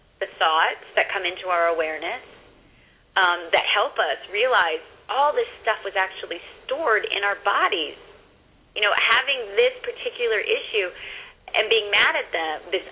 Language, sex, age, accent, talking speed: English, female, 30-49, American, 150 wpm